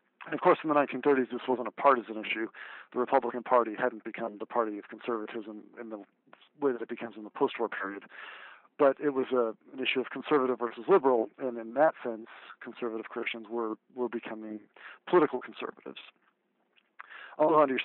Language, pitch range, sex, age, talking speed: English, 115-135 Hz, male, 40-59, 190 wpm